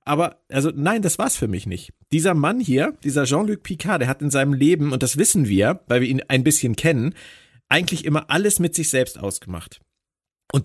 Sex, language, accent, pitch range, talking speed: male, German, German, 125-165 Hz, 210 wpm